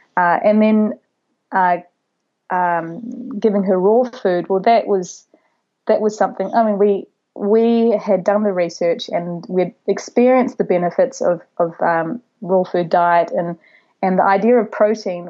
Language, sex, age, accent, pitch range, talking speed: English, female, 20-39, Australian, 180-220 Hz, 155 wpm